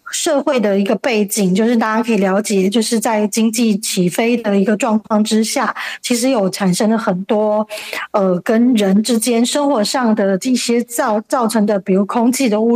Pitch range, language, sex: 205-250 Hz, Chinese, female